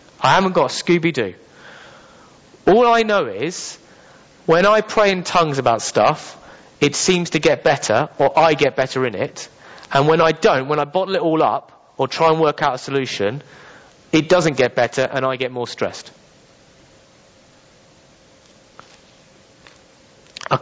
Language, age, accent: English, 30-49, British